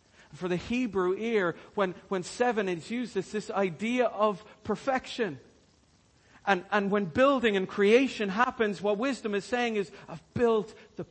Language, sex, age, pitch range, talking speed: English, male, 50-69, 165-225 Hz, 155 wpm